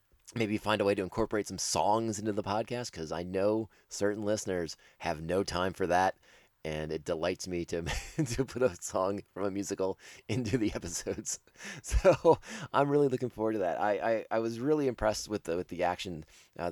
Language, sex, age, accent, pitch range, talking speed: English, male, 30-49, American, 90-115 Hz, 195 wpm